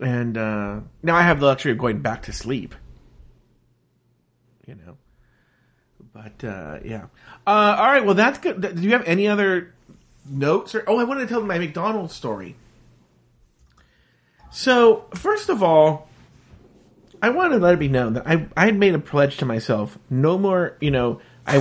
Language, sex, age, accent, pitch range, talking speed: English, male, 30-49, American, 120-180 Hz, 170 wpm